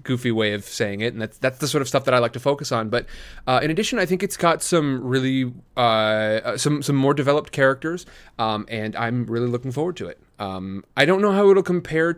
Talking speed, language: 240 wpm, English